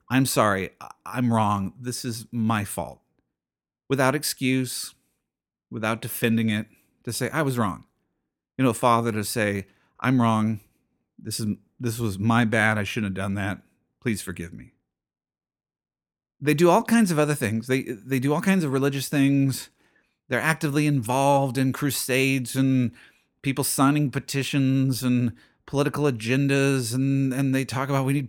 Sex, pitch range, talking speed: male, 110-140 Hz, 155 wpm